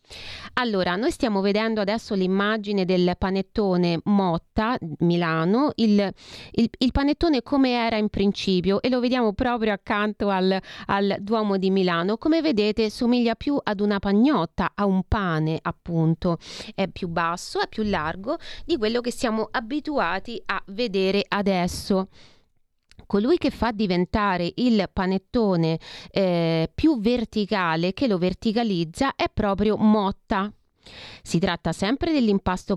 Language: Italian